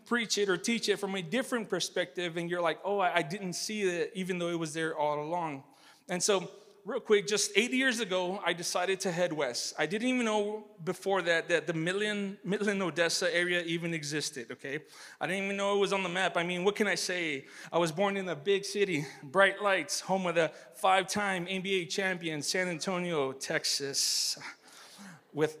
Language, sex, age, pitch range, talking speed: English, male, 30-49, 170-215 Hz, 200 wpm